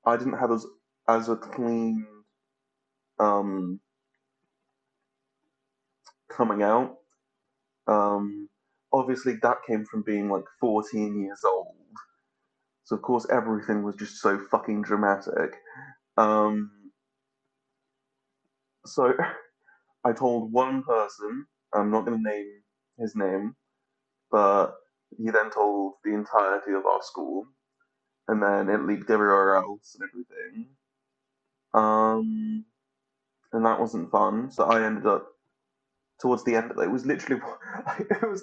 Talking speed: 120 wpm